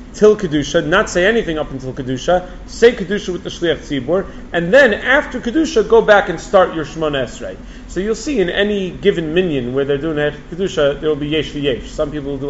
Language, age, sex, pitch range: English, 40-59, male, 145-180 Hz